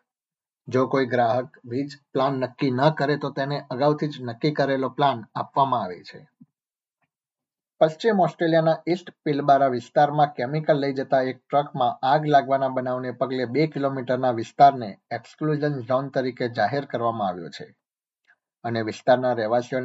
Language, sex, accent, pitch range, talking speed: Gujarati, male, native, 125-145 Hz, 55 wpm